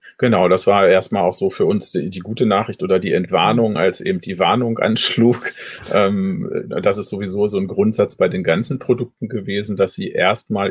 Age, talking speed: 40-59, 195 wpm